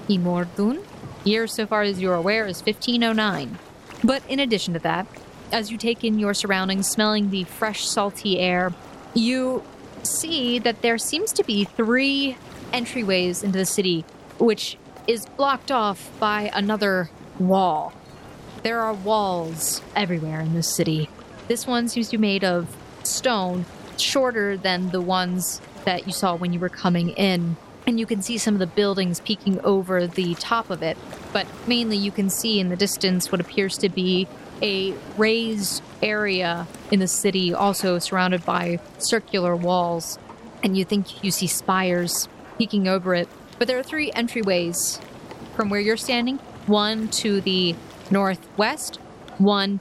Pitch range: 180-225 Hz